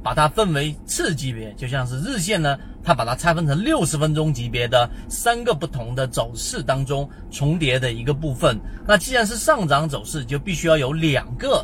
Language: Chinese